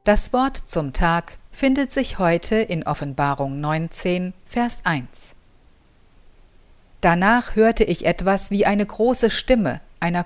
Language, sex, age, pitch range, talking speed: German, female, 50-69, 160-220 Hz, 125 wpm